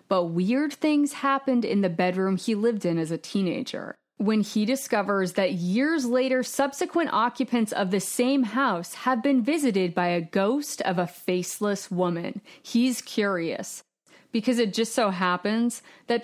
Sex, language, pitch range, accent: female, English, 185-255 Hz, American